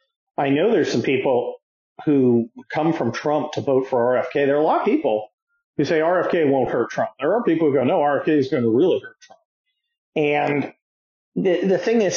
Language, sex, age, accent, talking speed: English, male, 40-59, American, 210 wpm